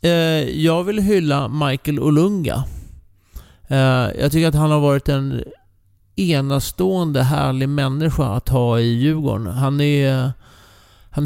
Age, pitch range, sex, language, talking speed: 30-49, 120-150 Hz, male, English, 110 wpm